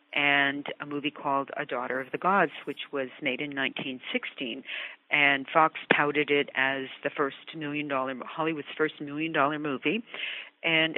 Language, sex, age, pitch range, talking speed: English, female, 50-69, 140-170 Hz, 165 wpm